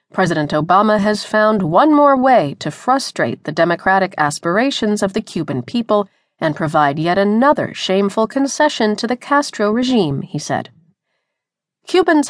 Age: 40-59